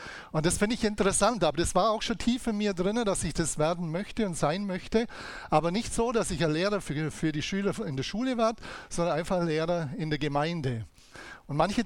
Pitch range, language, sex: 150-200 Hz, German, male